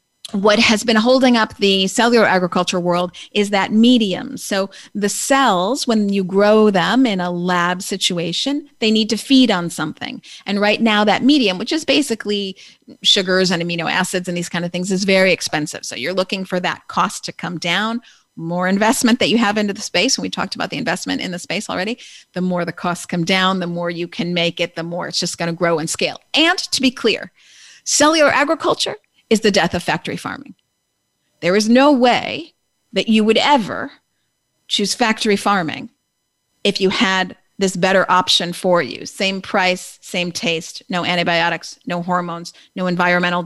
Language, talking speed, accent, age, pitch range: English, 190 wpm, American, 40-59, 180-245 Hz